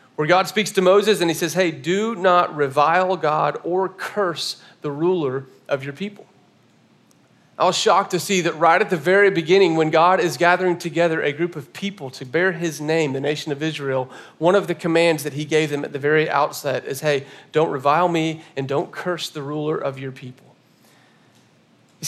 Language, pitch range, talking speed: English, 145-180 Hz, 200 wpm